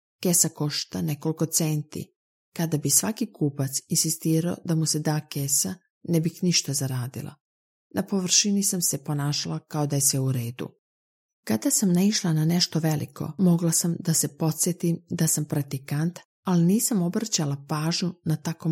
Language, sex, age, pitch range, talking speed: Croatian, female, 40-59, 150-185 Hz, 155 wpm